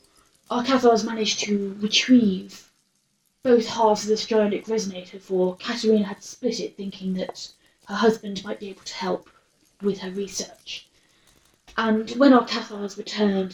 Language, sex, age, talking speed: English, female, 20-39, 145 wpm